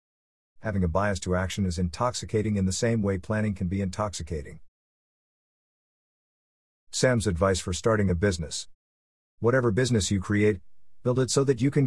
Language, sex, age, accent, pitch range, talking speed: English, male, 50-69, American, 85-110 Hz, 155 wpm